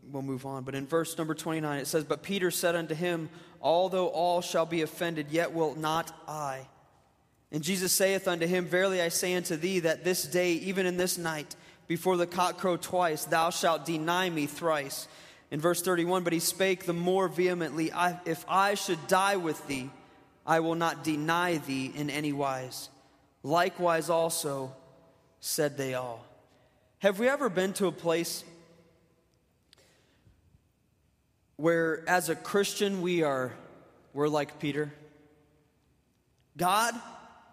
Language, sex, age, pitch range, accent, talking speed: English, male, 20-39, 150-185 Hz, American, 155 wpm